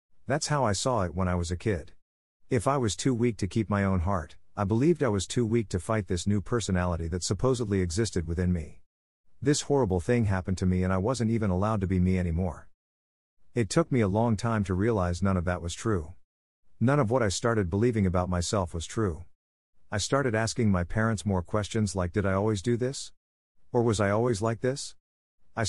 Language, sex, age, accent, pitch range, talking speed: English, male, 50-69, American, 90-115 Hz, 220 wpm